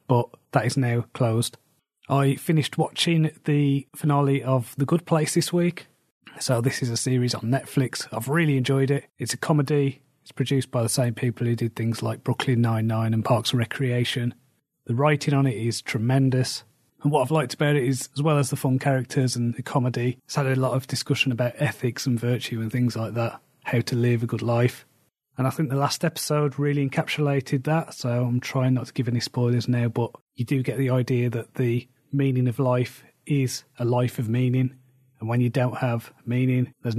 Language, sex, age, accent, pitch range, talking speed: English, male, 30-49, British, 120-140 Hz, 210 wpm